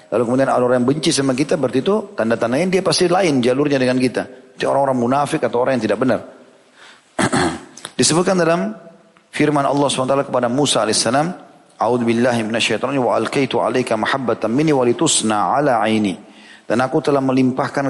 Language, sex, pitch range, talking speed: Indonesian, male, 110-135 Hz, 150 wpm